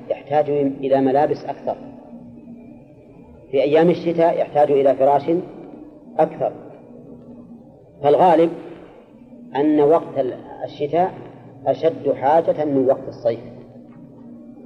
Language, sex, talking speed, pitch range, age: Arabic, female, 80 wpm, 130-160 Hz, 40-59